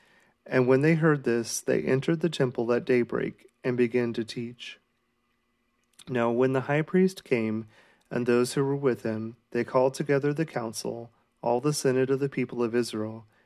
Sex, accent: male, American